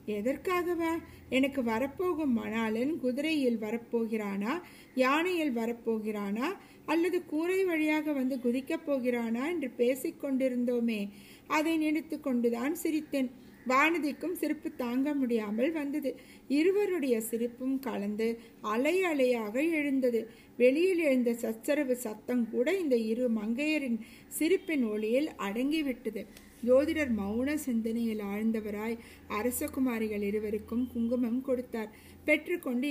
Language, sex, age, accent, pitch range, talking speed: Tamil, female, 50-69, native, 230-295 Hz, 90 wpm